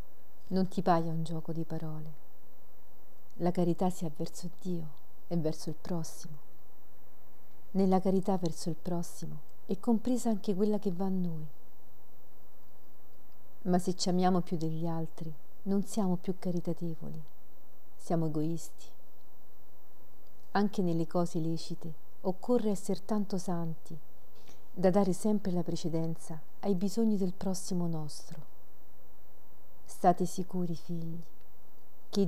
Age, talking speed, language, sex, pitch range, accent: 40-59, 120 wpm, Italian, female, 165-195 Hz, native